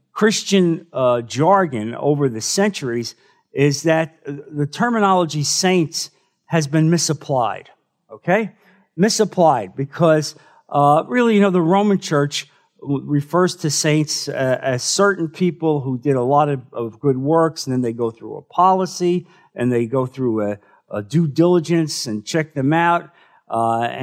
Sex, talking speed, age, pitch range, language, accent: male, 145 wpm, 50-69, 125-175 Hz, English, American